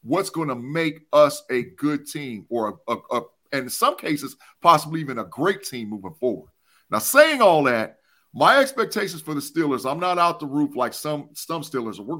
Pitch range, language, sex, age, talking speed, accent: 145-225 Hz, English, male, 40-59, 205 wpm, American